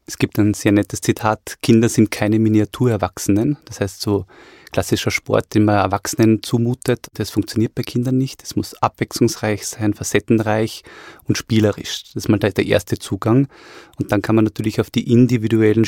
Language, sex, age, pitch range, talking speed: German, male, 20-39, 105-125 Hz, 170 wpm